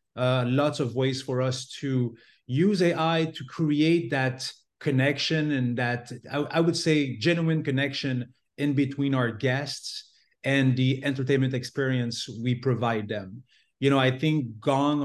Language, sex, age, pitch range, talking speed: English, male, 30-49, 125-145 Hz, 150 wpm